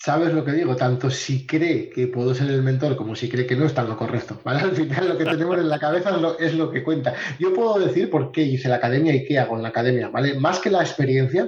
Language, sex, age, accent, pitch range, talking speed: Spanish, male, 30-49, Spanish, 125-160 Hz, 265 wpm